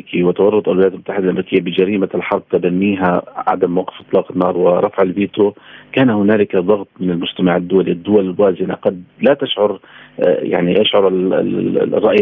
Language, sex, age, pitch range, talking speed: Arabic, male, 40-59, 95-110 Hz, 135 wpm